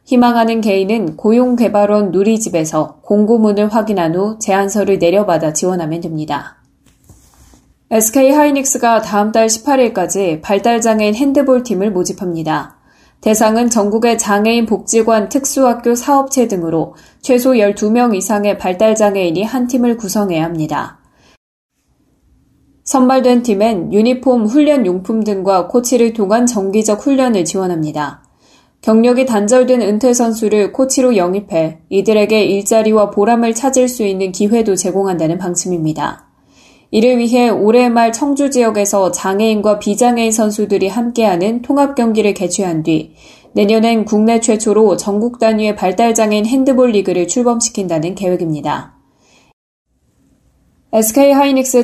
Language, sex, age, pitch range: Korean, female, 20-39, 195-240 Hz